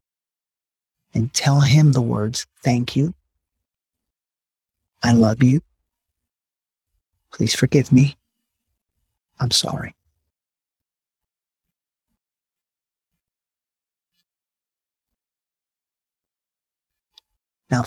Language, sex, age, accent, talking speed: English, male, 50-69, American, 55 wpm